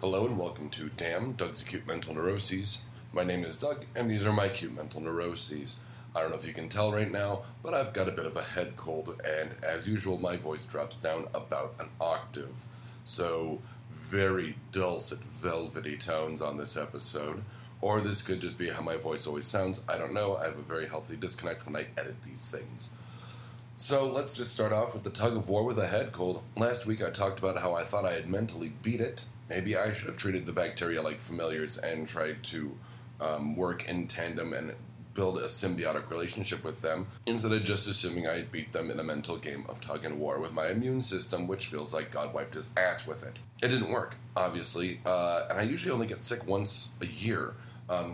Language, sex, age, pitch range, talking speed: English, male, 40-59, 90-120 Hz, 215 wpm